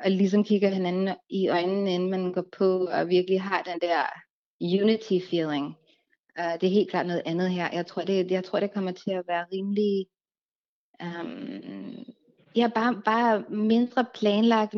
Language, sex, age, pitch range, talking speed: Danish, female, 20-39, 175-210 Hz, 155 wpm